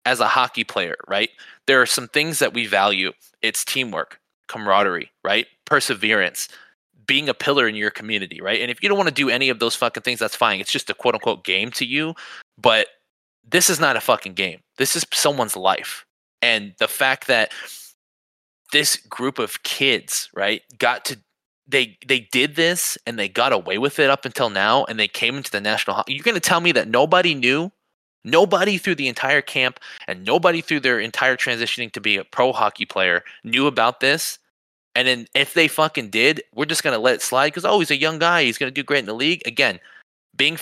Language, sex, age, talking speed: English, male, 20-39, 215 wpm